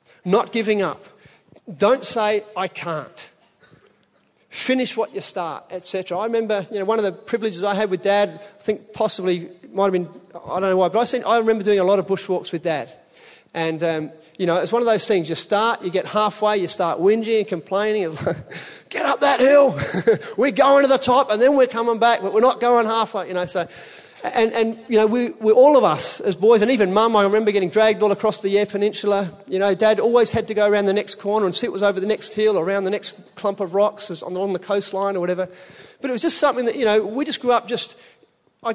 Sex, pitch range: male, 185-225 Hz